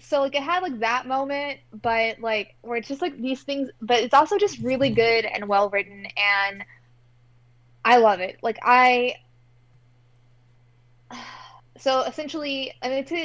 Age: 20-39